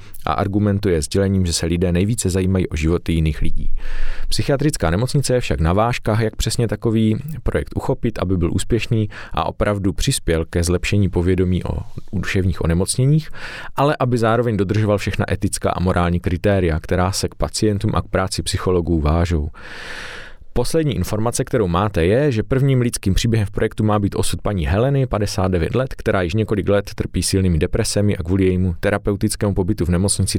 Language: Czech